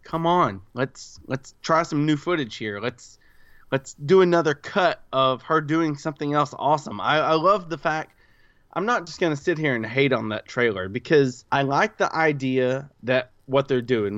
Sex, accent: male, American